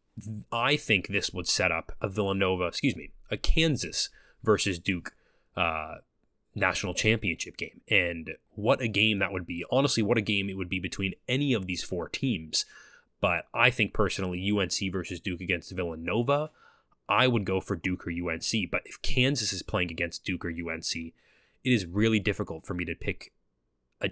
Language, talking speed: English, 180 wpm